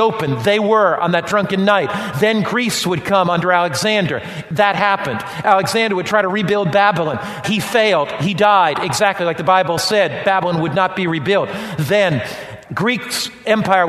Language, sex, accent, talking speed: English, male, American, 165 wpm